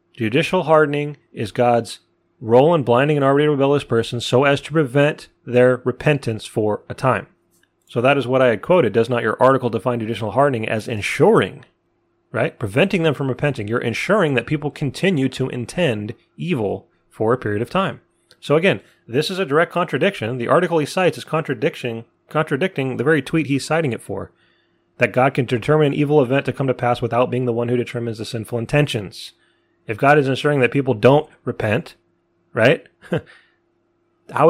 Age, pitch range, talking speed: 30-49, 115-145 Hz, 185 wpm